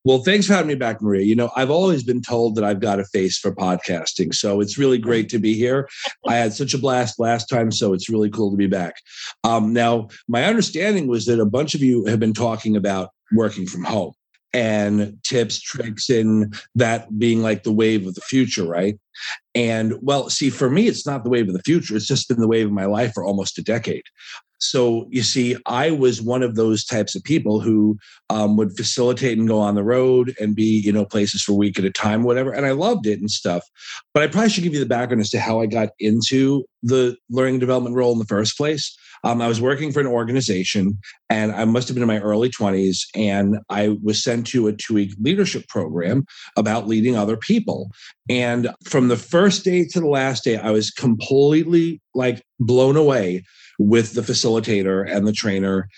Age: 40-59